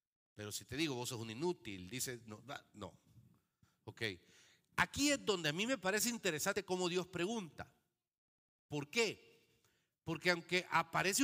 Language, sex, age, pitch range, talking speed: Spanish, male, 50-69, 125-175 Hz, 150 wpm